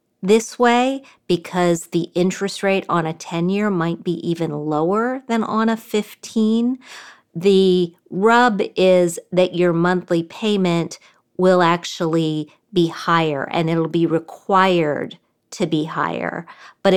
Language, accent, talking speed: English, American, 130 wpm